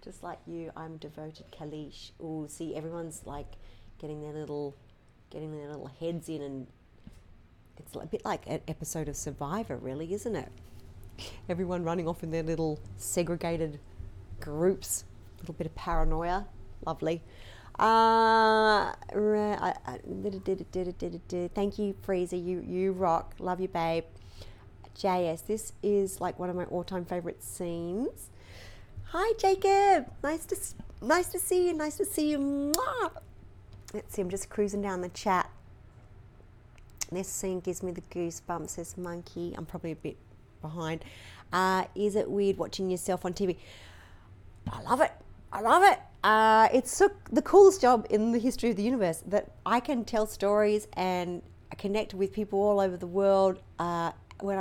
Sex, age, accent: female, 40-59, Australian